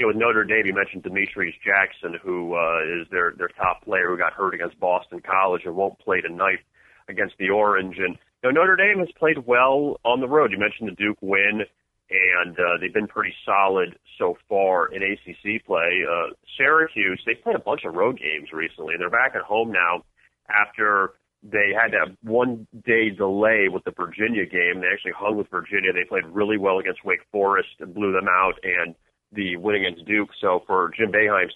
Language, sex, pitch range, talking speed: English, male, 95-120 Hz, 200 wpm